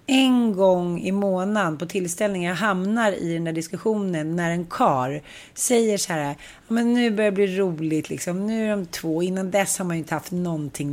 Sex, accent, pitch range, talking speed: female, native, 165-210 Hz, 200 wpm